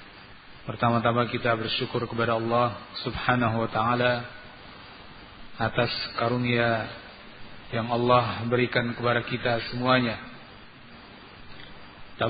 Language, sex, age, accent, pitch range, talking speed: Indonesian, male, 40-59, native, 105-120 Hz, 85 wpm